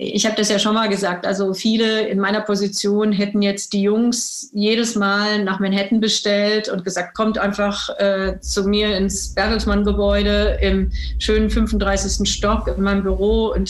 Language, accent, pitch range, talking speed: German, German, 195-215 Hz, 165 wpm